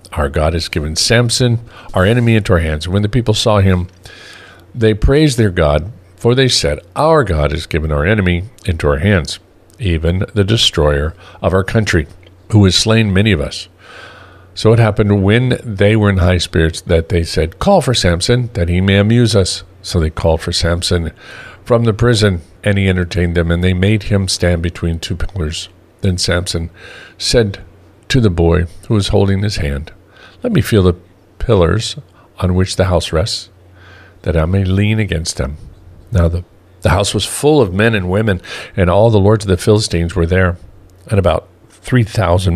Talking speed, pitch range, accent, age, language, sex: 190 wpm, 85-110 Hz, American, 50-69, English, male